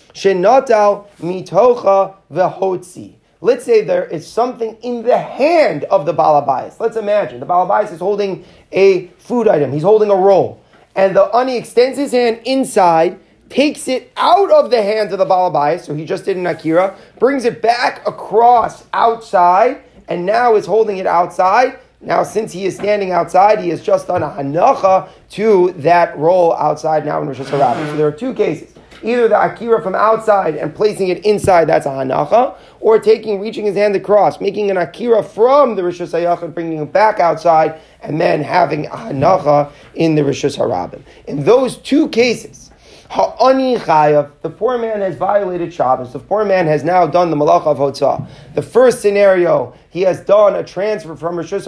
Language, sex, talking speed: English, male, 180 wpm